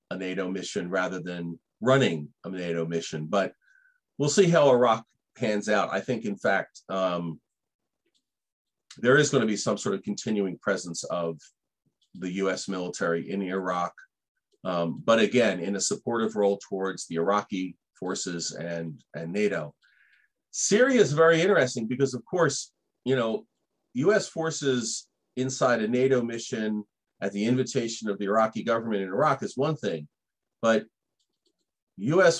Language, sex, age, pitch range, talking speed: Turkish, male, 40-59, 95-145 Hz, 150 wpm